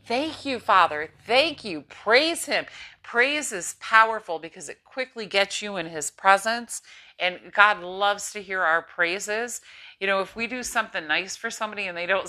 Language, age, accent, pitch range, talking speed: English, 40-59, American, 170-210 Hz, 180 wpm